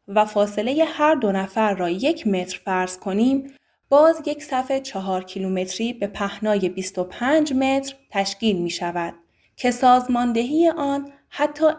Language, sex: Persian, female